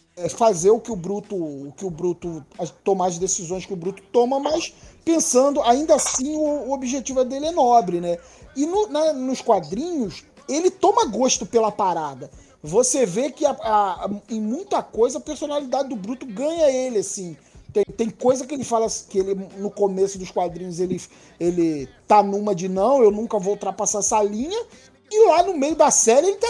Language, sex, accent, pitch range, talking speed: Portuguese, male, Brazilian, 185-265 Hz, 195 wpm